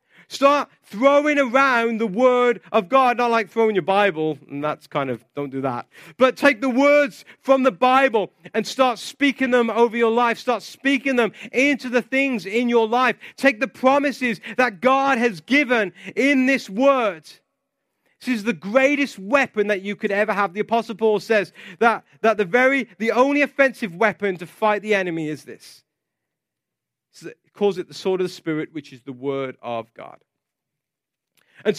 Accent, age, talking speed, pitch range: British, 30-49, 175 wpm, 195-255 Hz